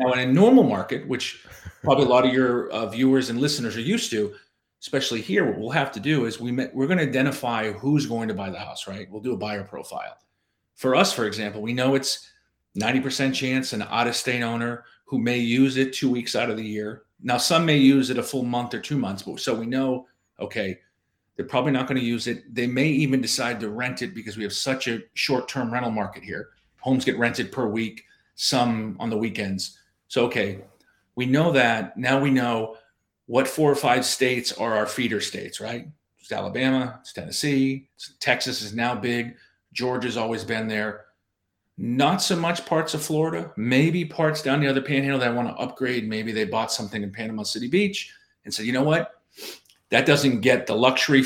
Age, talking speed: 40-59, 215 wpm